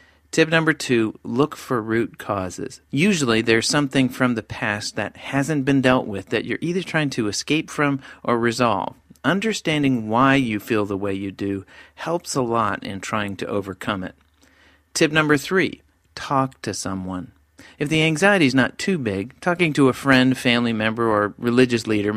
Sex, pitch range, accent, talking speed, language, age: male, 105-140 Hz, American, 175 wpm, English, 40-59